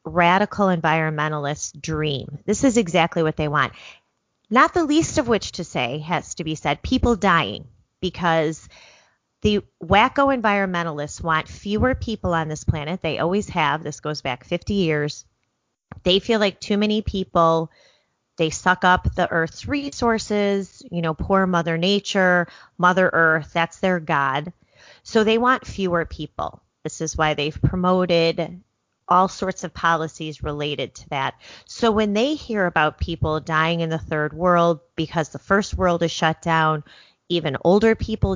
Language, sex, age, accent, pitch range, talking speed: English, female, 30-49, American, 155-195 Hz, 155 wpm